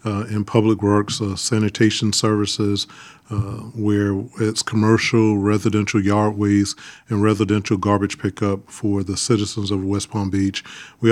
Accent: American